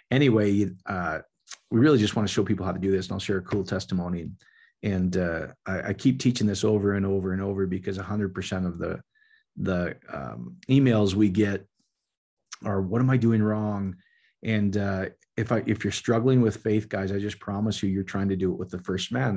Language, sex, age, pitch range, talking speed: English, male, 40-59, 95-110 Hz, 215 wpm